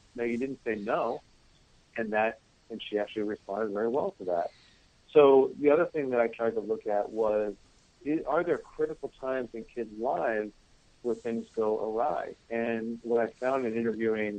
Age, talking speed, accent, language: 50-69, 185 wpm, American, English